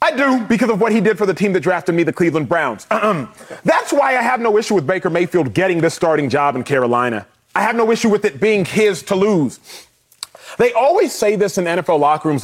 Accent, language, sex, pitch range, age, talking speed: American, English, male, 165-215 Hz, 30-49, 245 wpm